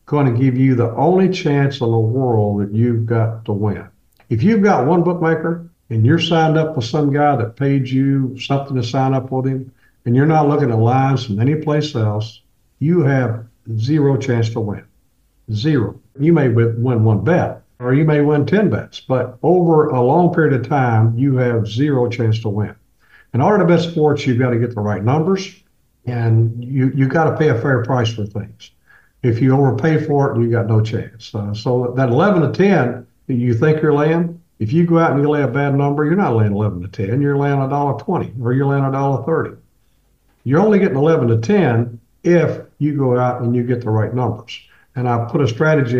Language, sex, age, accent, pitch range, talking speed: English, male, 50-69, American, 115-150 Hz, 220 wpm